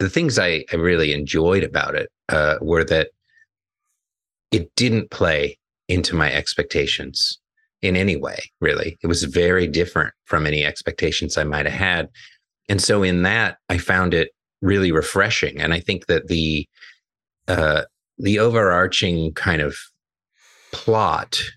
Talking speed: 140 wpm